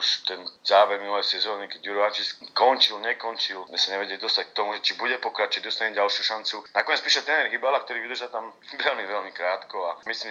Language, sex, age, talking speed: Slovak, male, 40-59, 190 wpm